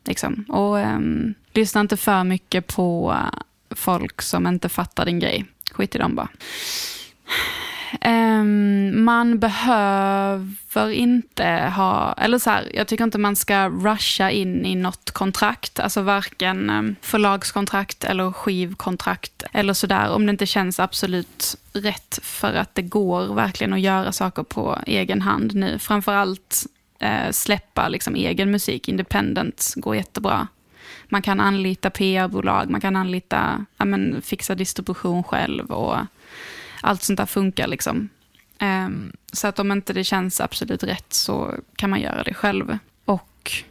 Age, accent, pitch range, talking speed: 20-39, native, 190-210 Hz, 145 wpm